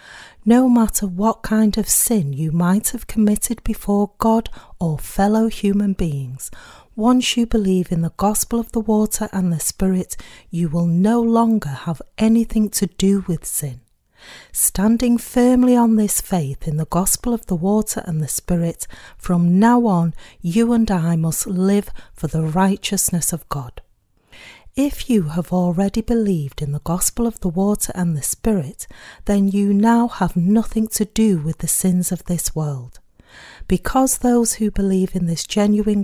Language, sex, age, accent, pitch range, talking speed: English, female, 40-59, British, 170-215 Hz, 165 wpm